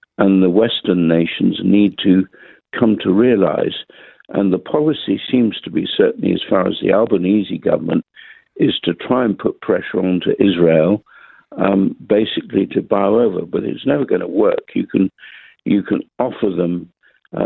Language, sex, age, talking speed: English, male, 60-79, 170 wpm